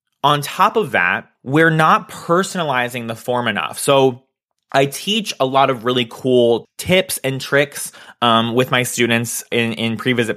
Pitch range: 120-160 Hz